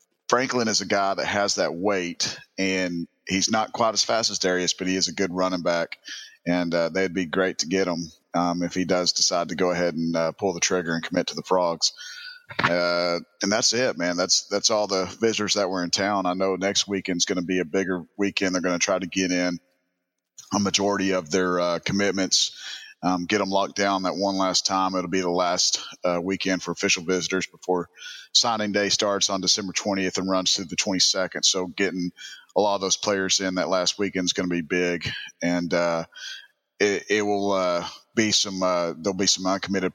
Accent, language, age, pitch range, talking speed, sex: American, English, 30-49, 90-100 Hz, 215 wpm, male